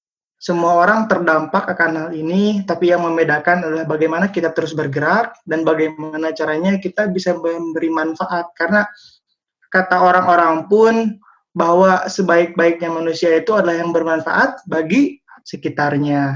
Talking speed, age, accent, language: 125 wpm, 20-39, native, Indonesian